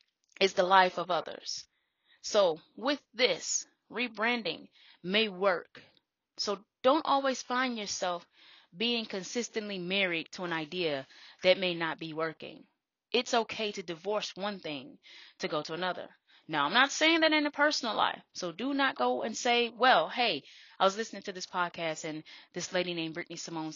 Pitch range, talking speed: 175-240 Hz, 165 wpm